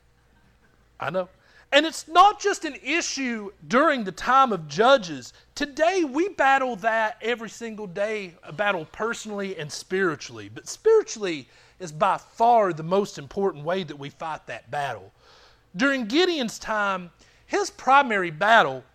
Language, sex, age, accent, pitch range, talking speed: English, male, 40-59, American, 180-260 Hz, 145 wpm